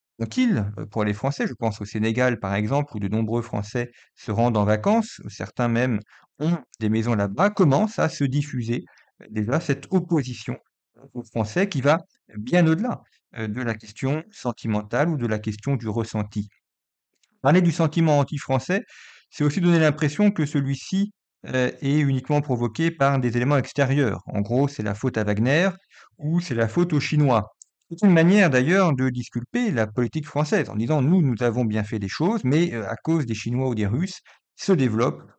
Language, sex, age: French, male, 40-59